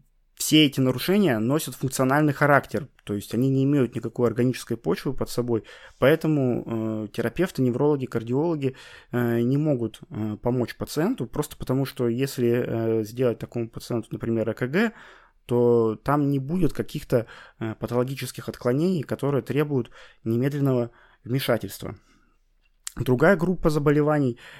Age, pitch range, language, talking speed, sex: 20-39, 115-145 Hz, Russian, 115 wpm, male